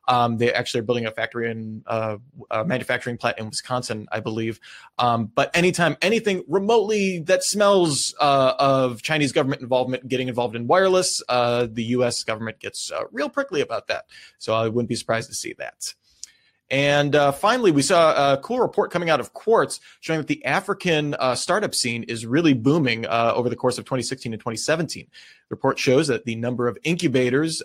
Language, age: English, 30-49